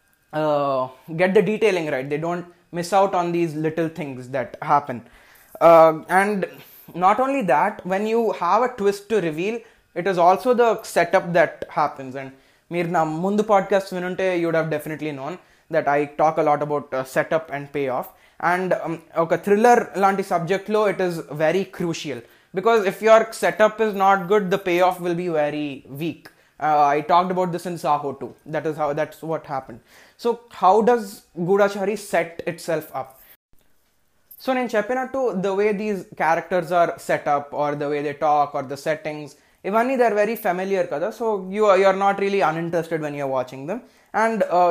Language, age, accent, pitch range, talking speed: Telugu, 20-39, native, 155-205 Hz, 190 wpm